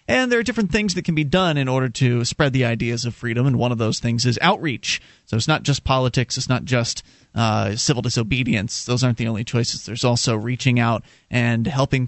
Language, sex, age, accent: English, male, 30-49, American